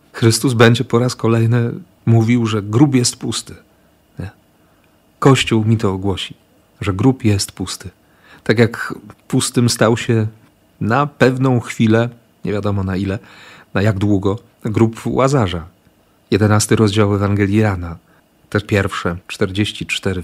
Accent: native